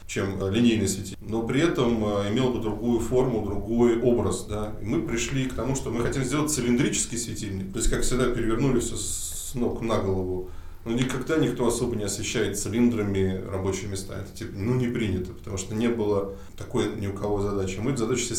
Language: Russian